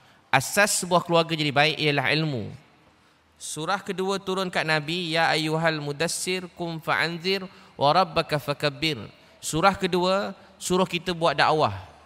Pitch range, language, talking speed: 150-190 Hz, Malay, 125 wpm